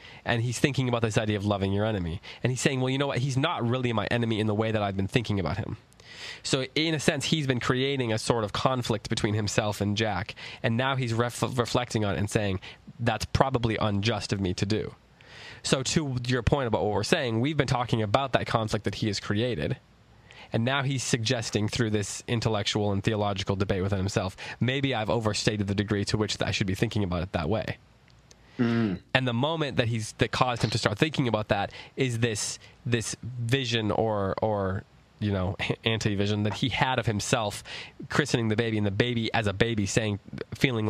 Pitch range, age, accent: 105-125 Hz, 20-39, American